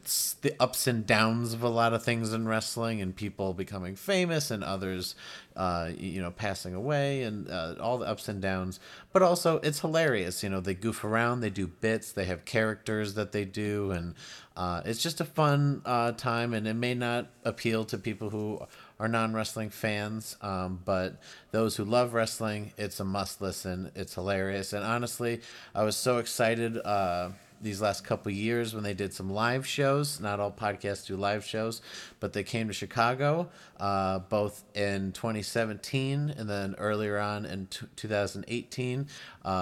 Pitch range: 95-120 Hz